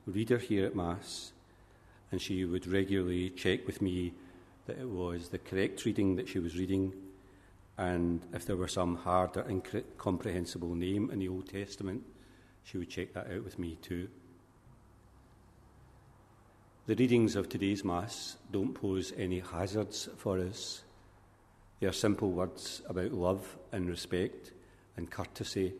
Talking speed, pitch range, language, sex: 145 wpm, 90-100 Hz, English, male